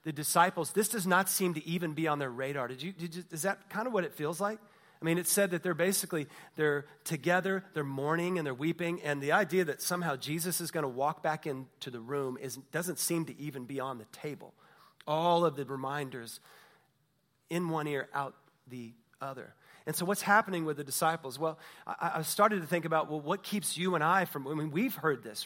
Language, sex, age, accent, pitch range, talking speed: English, male, 30-49, American, 145-180 Hz, 230 wpm